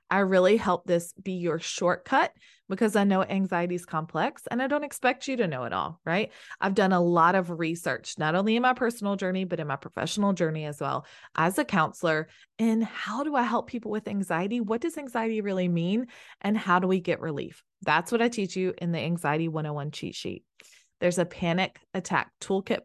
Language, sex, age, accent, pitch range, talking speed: English, female, 20-39, American, 165-220 Hz, 210 wpm